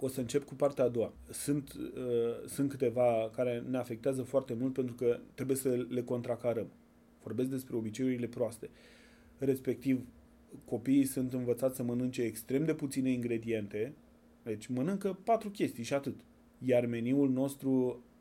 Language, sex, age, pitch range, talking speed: Romanian, male, 30-49, 120-140 Hz, 150 wpm